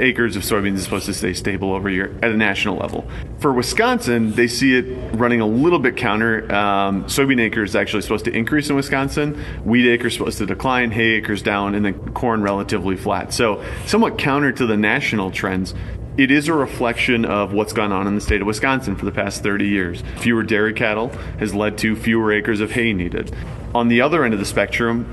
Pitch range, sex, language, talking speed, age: 100-120 Hz, male, English, 215 wpm, 30-49